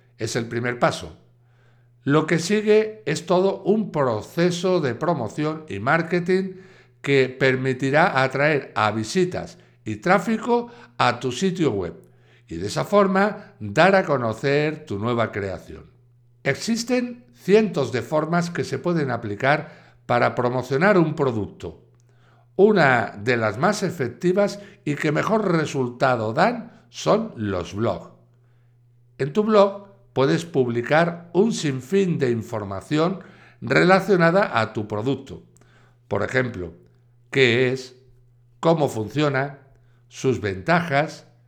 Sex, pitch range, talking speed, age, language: male, 120-165 Hz, 120 wpm, 60-79, Spanish